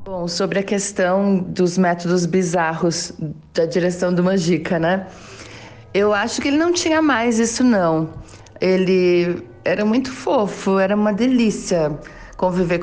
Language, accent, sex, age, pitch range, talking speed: Portuguese, Brazilian, female, 40-59, 170-200 Hz, 135 wpm